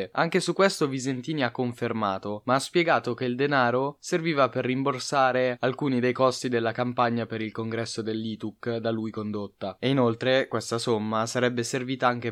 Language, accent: Italian, native